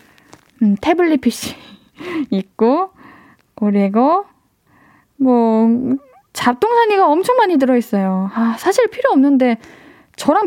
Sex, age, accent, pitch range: female, 20-39, native, 230-320 Hz